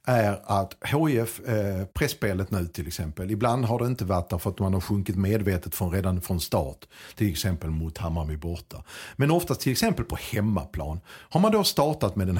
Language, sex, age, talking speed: Swedish, male, 50-69, 195 wpm